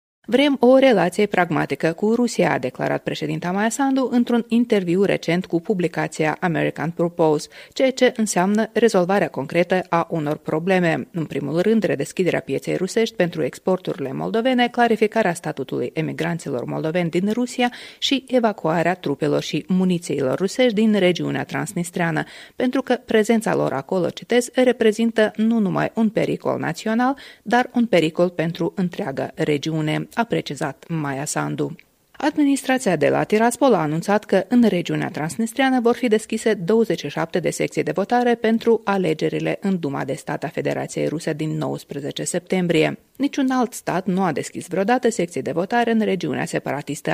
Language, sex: Romanian, female